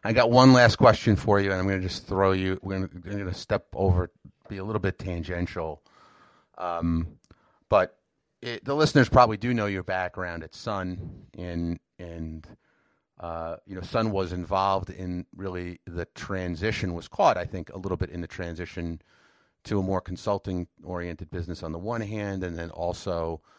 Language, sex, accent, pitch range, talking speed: English, male, American, 85-100 Hz, 185 wpm